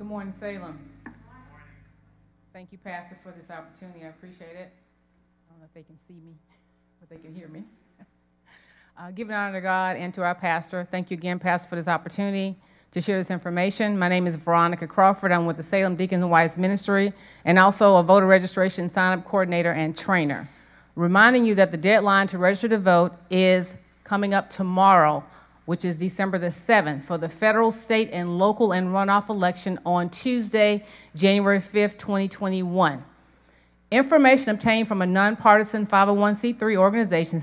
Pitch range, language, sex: 170-205 Hz, English, female